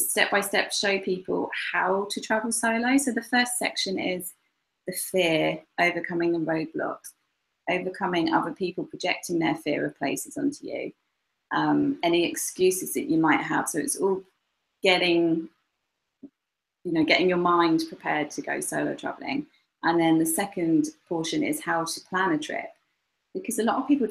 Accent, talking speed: British, 160 wpm